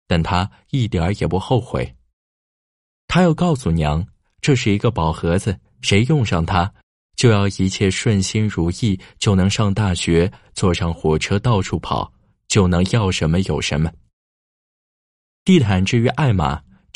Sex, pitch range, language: male, 80-115 Hz, Chinese